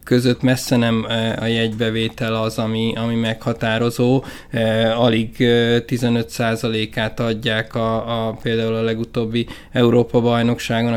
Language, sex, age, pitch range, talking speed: Hungarian, male, 20-39, 110-120 Hz, 90 wpm